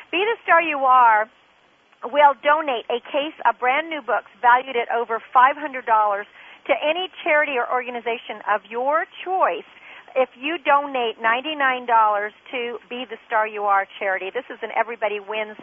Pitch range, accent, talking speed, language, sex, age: 220-285 Hz, American, 155 wpm, English, female, 50-69